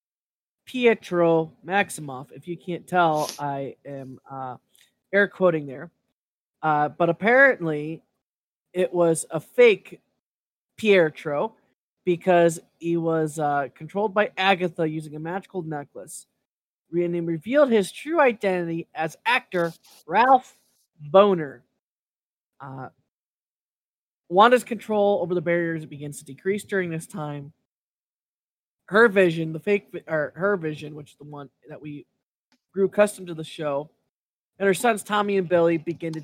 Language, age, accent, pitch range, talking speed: English, 20-39, American, 155-195 Hz, 130 wpm